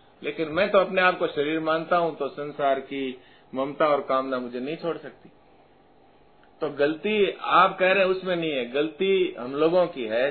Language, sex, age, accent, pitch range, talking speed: Hindi, male, 50-69, native, 130-175 Hz, 190 wpm